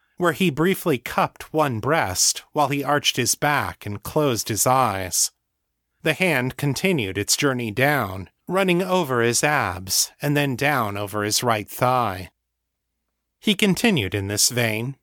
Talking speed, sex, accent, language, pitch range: 150 wpm, male, American, English, 105-160 Hz